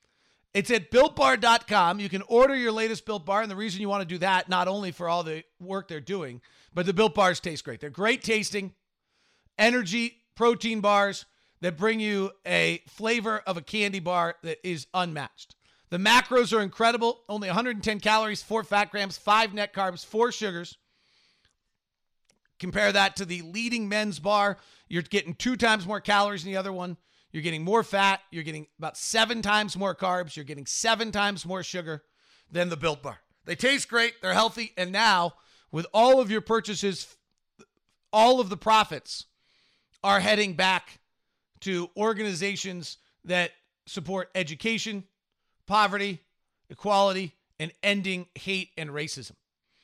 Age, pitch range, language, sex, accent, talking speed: 40-59, 180-220 Hz, English, male, American, 160 wpm